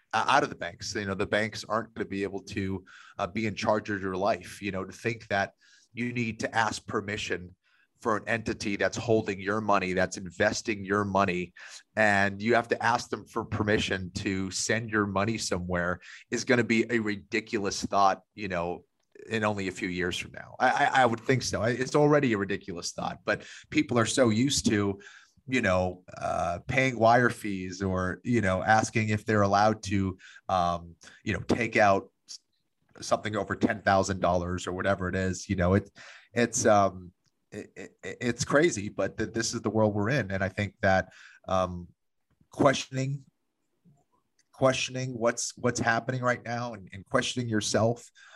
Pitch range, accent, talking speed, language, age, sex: 95-115 Hz, American, 175 wpm, English, 30-49, male